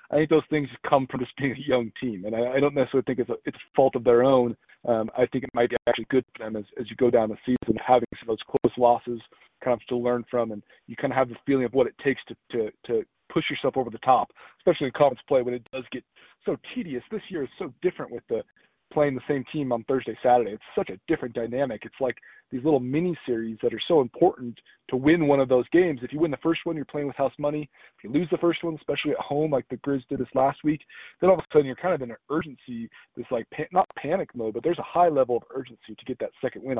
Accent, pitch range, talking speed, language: American, 125-155 Hz, 280 wpm, English